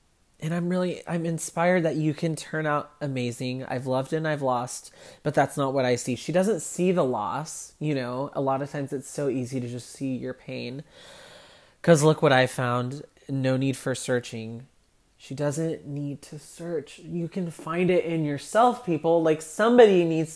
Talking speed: 195 wpm